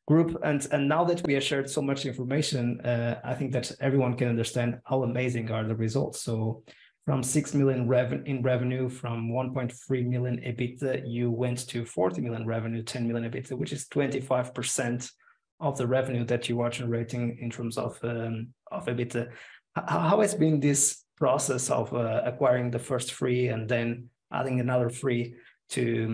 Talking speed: 185 wpm